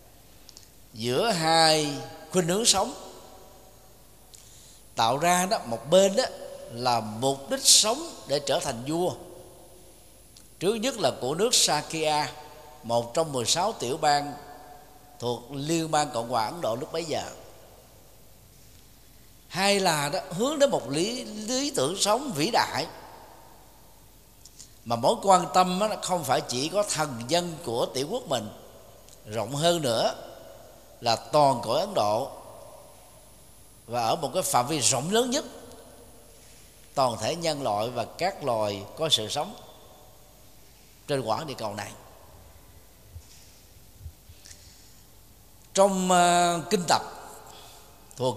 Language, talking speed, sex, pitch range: Vietnamese, 130 wpm, male, 115-175 Hz